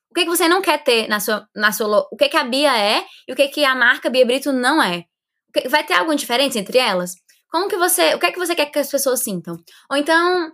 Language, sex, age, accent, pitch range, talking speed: Portuguese, female, 10-29, Brazilian, 225-295 Hz, 295 wpm